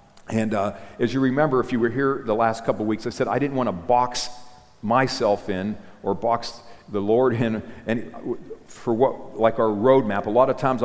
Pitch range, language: 105-130 Hz, English